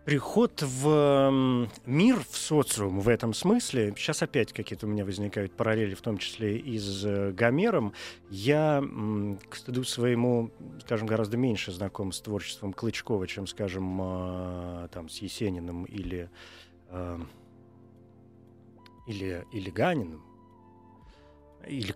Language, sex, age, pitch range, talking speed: Russian, male, 30-49, 95-125 Hz, 115 wpm